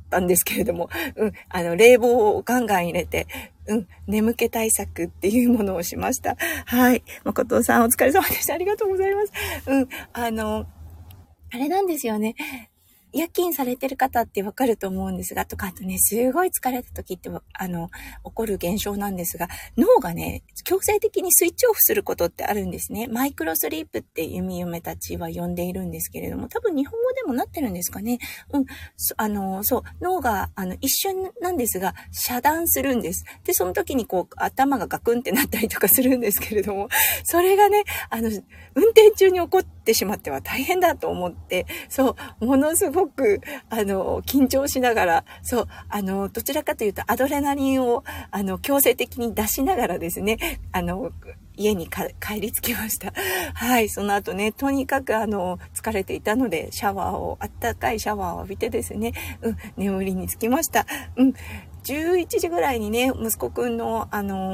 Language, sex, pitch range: Japanese, female, 195-280 Hz